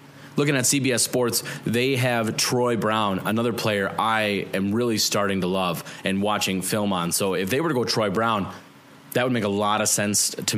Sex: male